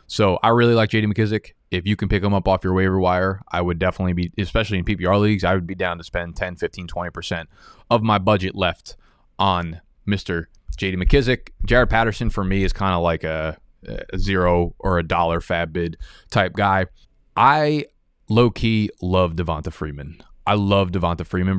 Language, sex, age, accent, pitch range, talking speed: English, male, 20-39, American, 85-115 Hz, 190 wpm